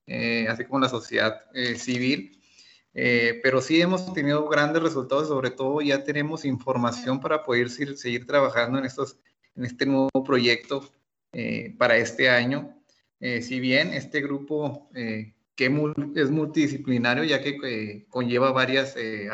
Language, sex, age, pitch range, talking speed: Spanish, male, 30-49, 120-145 Hz, 150 wpm